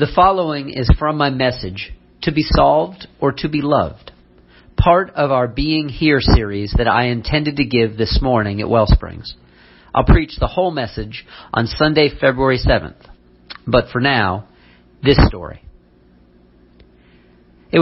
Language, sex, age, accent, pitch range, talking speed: English, male, 40-59, American, 95-135 Hz, 145 wpm